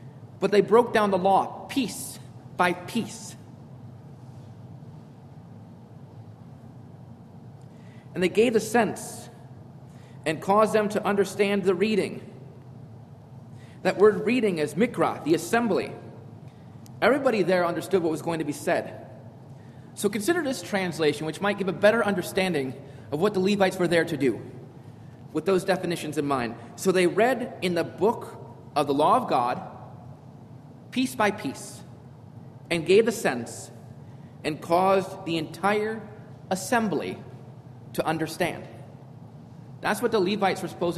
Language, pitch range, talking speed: English, 130-190 Hz, 135 wpm